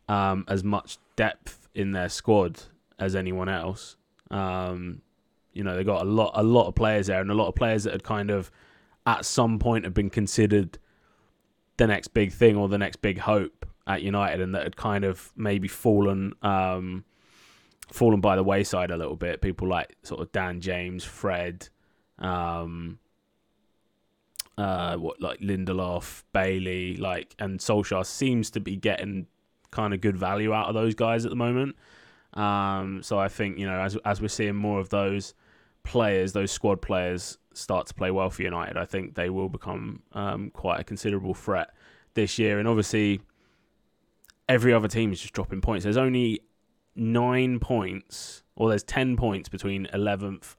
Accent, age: British, 20-39